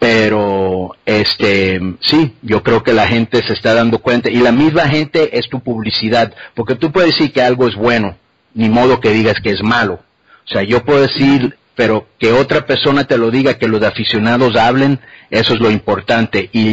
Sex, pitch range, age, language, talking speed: male, 105-125 Hz, 50-69, English, 195 wpm